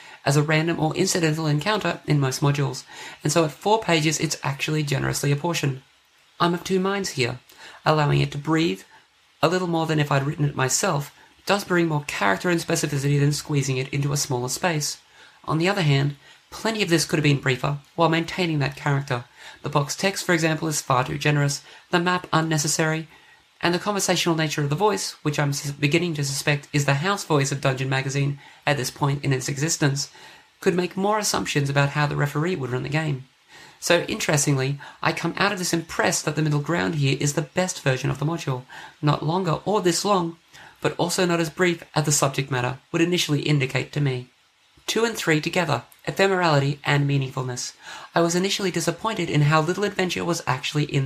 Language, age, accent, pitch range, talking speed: English, 30-49, Australian, 145-170 Hz, 200 wpm